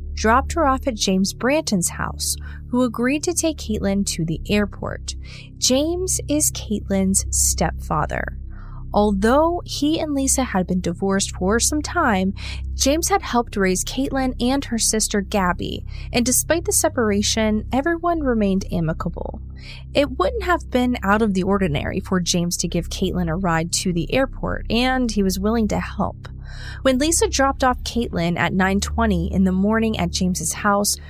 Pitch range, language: 175-255 Hz, English